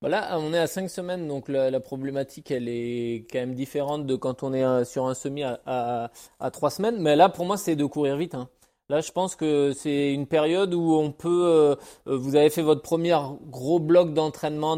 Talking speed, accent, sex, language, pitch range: 215 wpm, French, male, French, 130-155 Hz